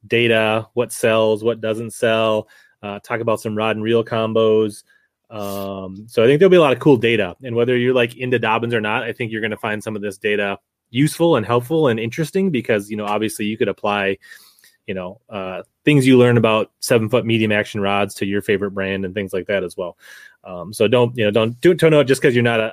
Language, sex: English, male